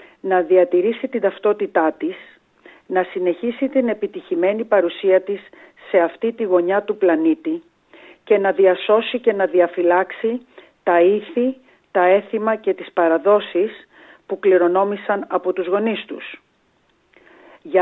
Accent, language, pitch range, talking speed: native, Greek, 185-250 Hz, 125 wpm